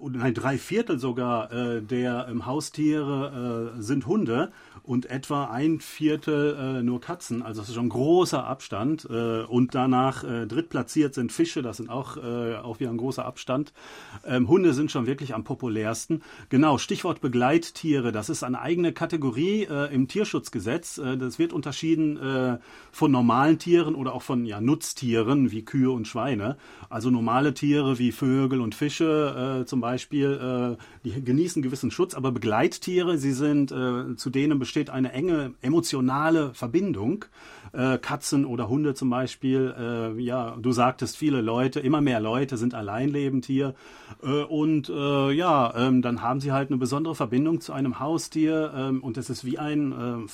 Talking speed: 170 wpm